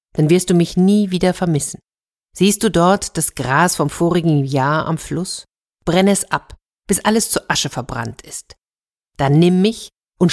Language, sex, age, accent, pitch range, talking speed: German, female, 50-69, German, 145-195 Hz, 175 wpm